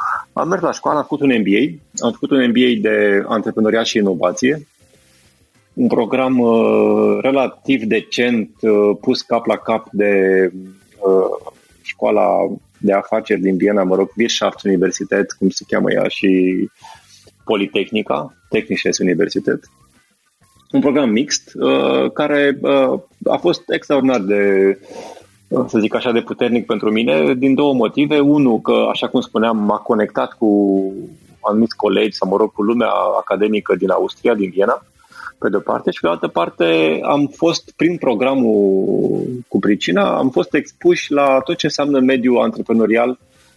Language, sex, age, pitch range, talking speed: Romanian, male, 30-49, 100-130 Hz, 150 wpm